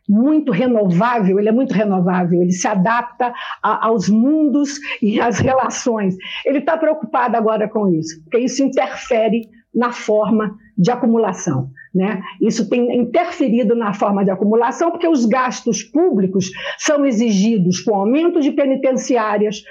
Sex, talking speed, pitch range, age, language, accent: female, 135 wpm, 215-280 Hz, 50-69, Portuguese, Brazilian